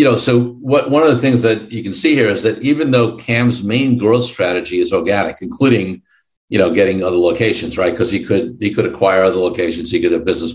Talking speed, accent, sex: 240 wpm, American, male